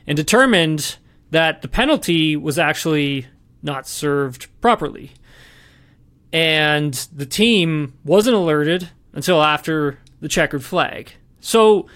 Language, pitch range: English, 140-175 Hz